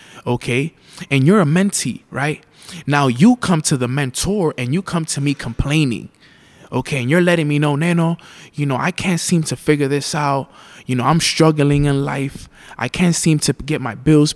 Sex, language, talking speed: male, English, 195 wpm